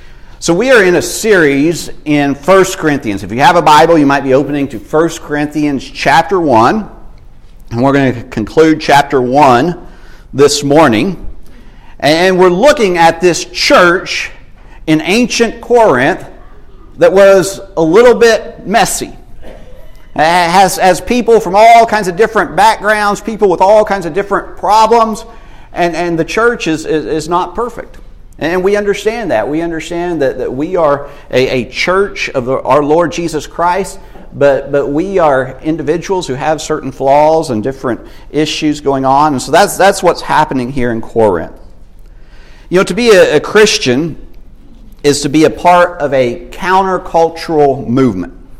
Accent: American